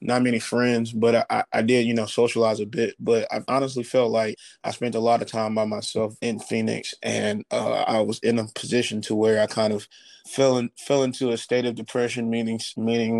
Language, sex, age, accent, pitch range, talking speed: English, male, 20-39, American, 110-125 Hz, 225 wpm